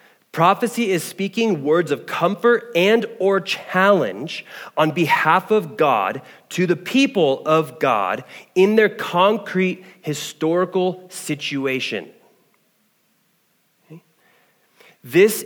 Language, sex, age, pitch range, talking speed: English, male, 30-49, 170-220 Hz, 95 wpm